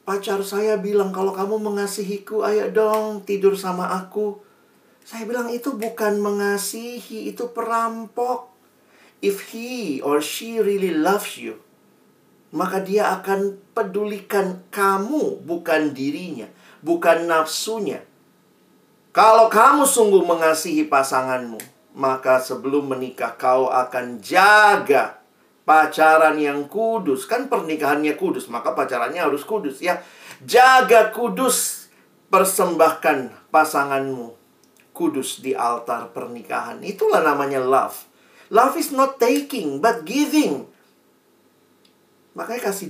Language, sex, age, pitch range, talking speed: Indonesian, male, 40-59, 150-225 Hz, 105 wpm